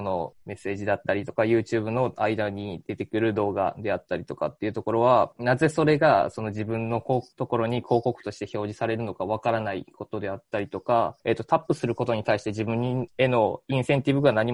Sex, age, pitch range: male, 20-39, 110-130 Hz